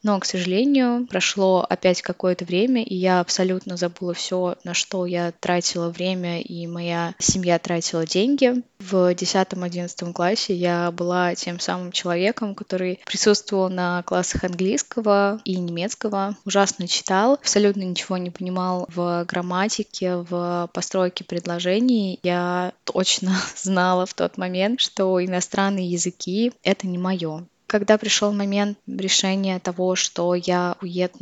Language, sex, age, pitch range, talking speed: Russian, female, 10-29, 180-200 Hz, 135 wpm